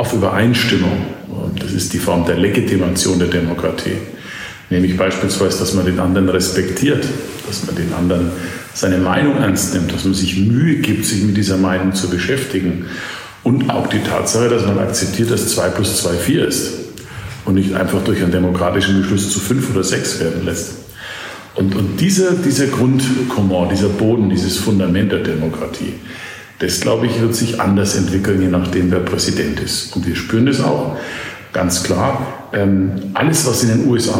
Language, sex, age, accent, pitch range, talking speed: German, male, 50-69, German, 95-115 Hz, 170 wpm